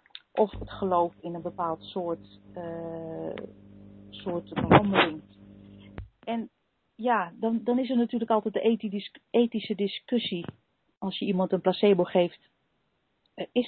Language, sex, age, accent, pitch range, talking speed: Dutch, female, 40-59, Dutch, 175-220 Hz, 125 wpm